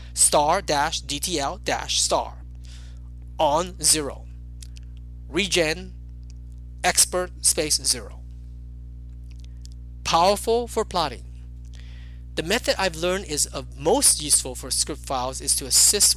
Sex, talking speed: male, 105 wpm